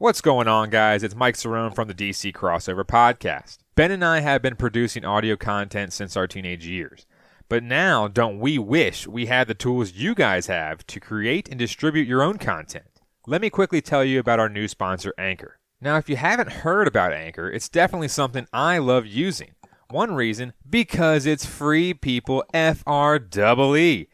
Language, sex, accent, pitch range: English, male, American, 110-155 Hz